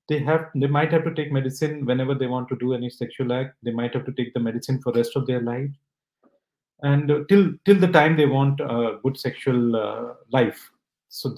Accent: Indian